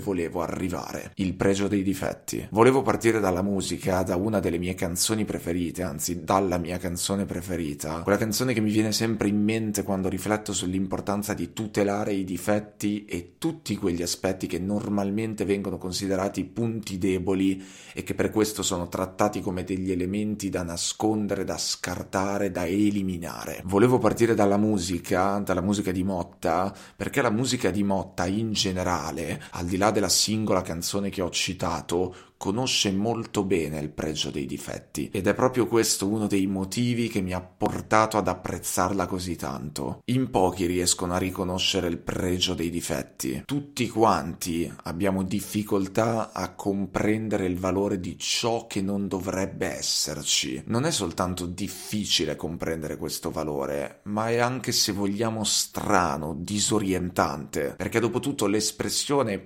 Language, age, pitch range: Italian, 30-49, 90-105 Hz